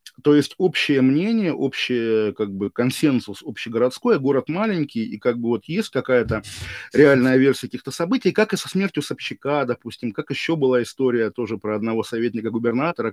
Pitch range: 115-145 Hz